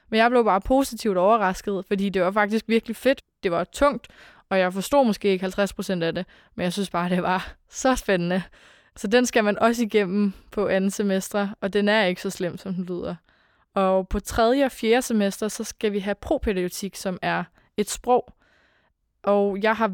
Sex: female